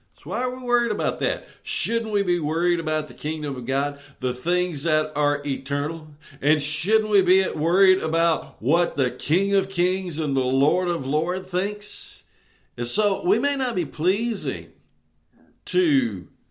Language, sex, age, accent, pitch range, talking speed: English, male, 60-79, American, 135-200 Hz, 165 wpm